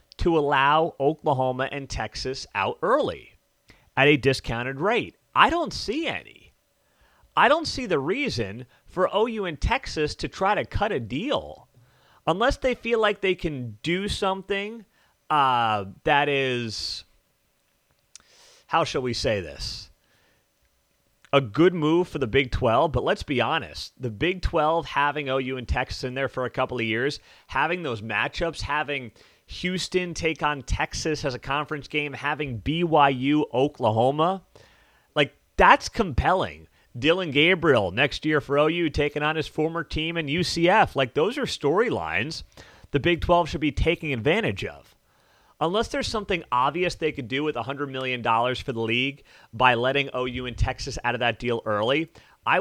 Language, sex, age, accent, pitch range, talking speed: English, male, 30-49, American, 120-160 Hz, 160 wpm